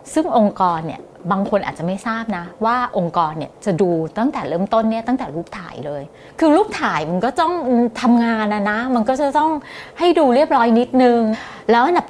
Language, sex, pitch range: English, female, 175-255 Hz